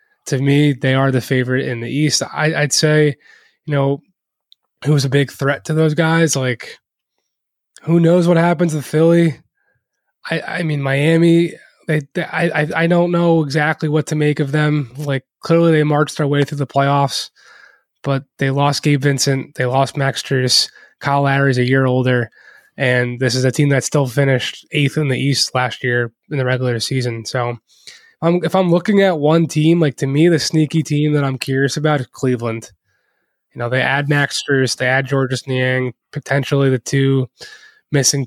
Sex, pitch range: male, 130-150 Hz